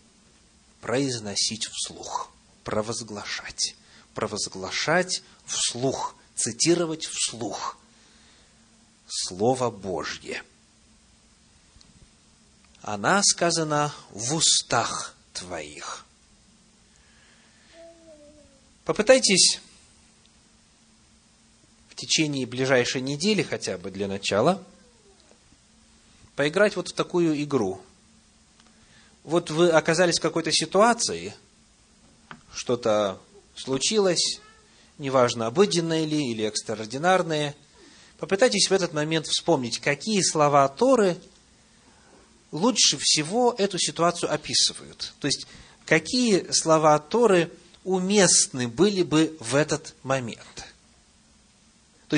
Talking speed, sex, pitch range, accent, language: 75 wpm, male, 130-185 Hz, native, Russian